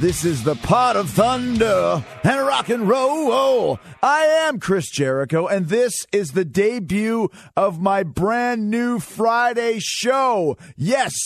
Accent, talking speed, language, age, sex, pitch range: American, 145 wpm, English, 40-59, male, 140-225 Hz